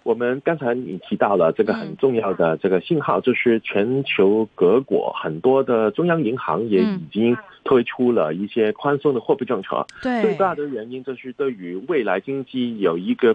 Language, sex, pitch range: Chinese, male, 100-145 Hz